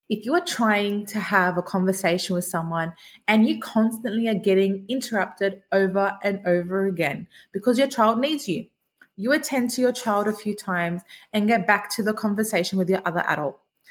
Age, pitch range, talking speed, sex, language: 20-39, 185-230 Hz, 185 wpm, female, English